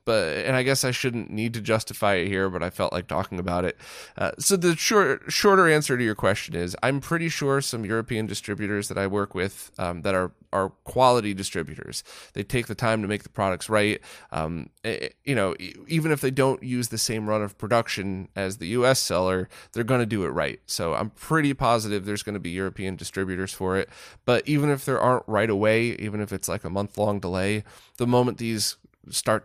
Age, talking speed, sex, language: 20-39, 225 wpm, male, English